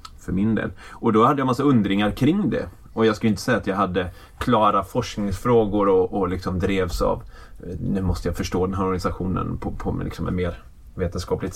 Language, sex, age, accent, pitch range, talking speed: Swedish, male, 20-39, native, 95-110 Hz, 210 wpm